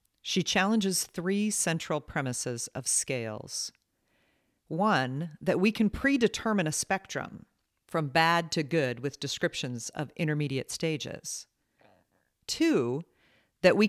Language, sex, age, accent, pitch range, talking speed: English, female, 40-59, American, 130-175 Hz, 110 wpm